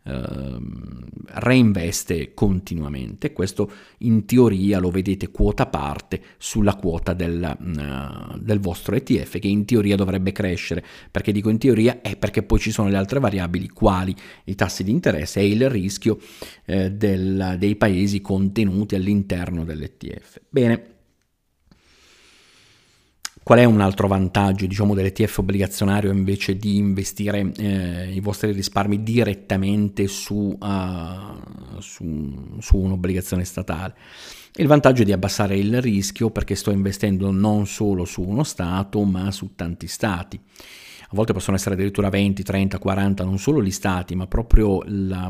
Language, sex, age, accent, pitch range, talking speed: Italian, male, 40-59, native, 95-105 Hz, 130 wpm